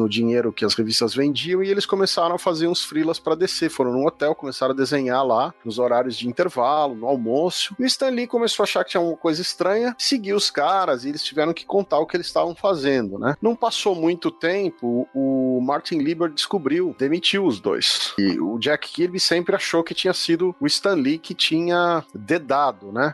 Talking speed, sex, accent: 210 wpm, male, Brazilian